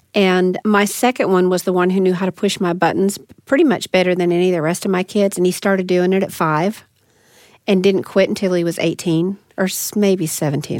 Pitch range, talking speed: 170-195 Hz, 235 wpm